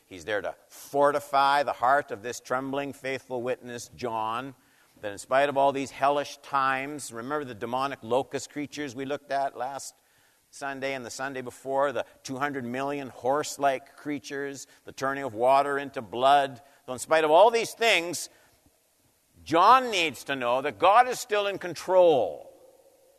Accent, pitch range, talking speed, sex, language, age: American, 95-150 Hz, 160 wpm, male, English, 50-69